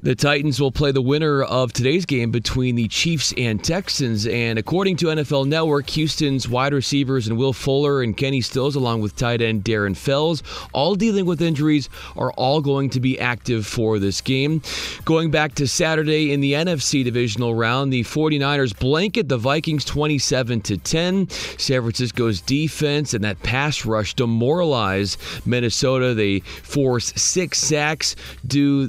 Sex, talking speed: male, 160 wpm